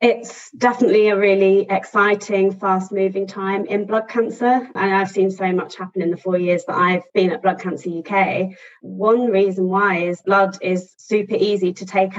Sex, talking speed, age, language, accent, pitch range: female, 180 wpm, 20-39, English, British, 180-195 Hz